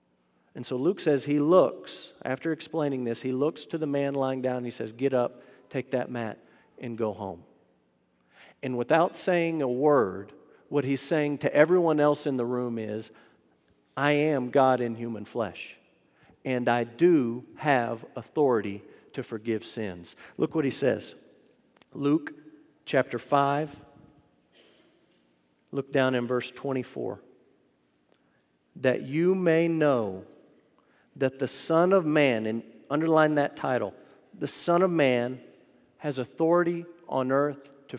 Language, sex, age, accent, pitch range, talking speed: English, male, 50-69, American, 115-150 Hz, 140 wpm